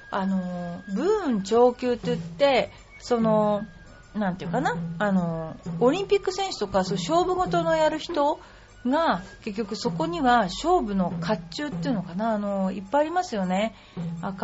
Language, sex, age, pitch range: Japanese, female, 40-59, 180-250 Hz